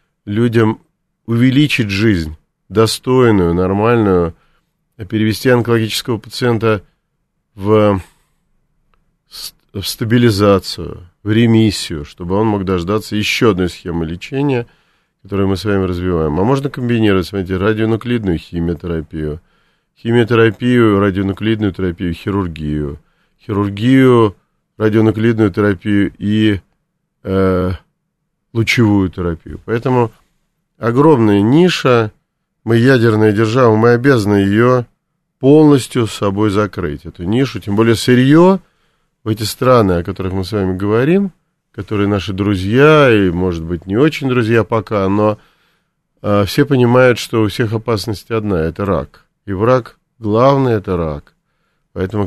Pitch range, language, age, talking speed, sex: 95-125 Hz, Russian, 40-59, 110 wpm, male